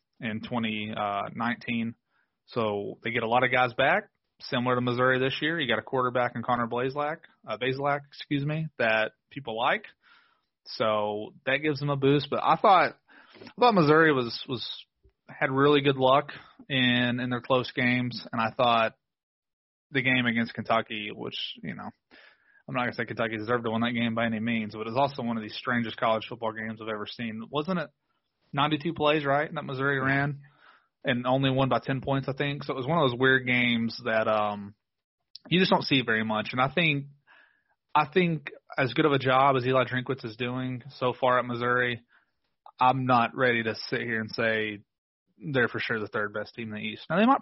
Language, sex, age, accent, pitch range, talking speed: English, male, 30-49, American, 115-140 Hz, 205 wpm